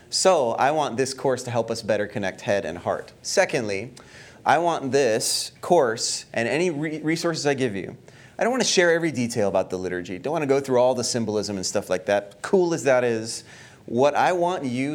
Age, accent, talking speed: 30-49, American, 215 wpm